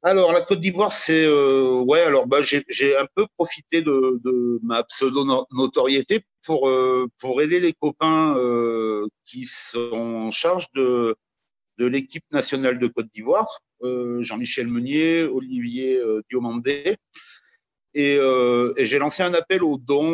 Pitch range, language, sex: 120-155 Hz, French, male